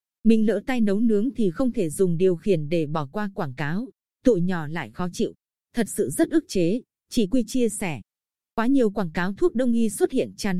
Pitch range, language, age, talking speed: 185-235 Hz, Vietnamese, 20-39, 225 wpm